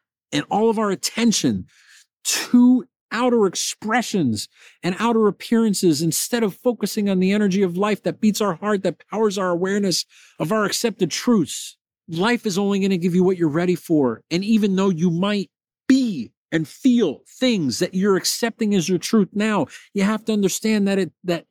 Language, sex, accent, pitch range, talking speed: English, male, American, 185-235 Hz, 180 wpm